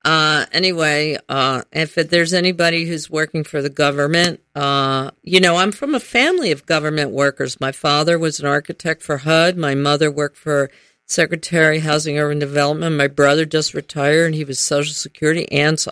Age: 50-69